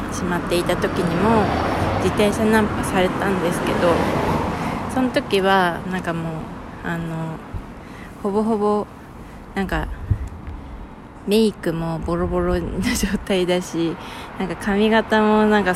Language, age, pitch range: Japanese, 20-39, 185-235 Hz